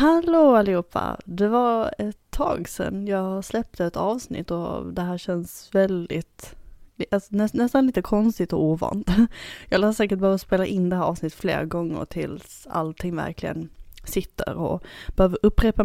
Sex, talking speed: female, 150 wpm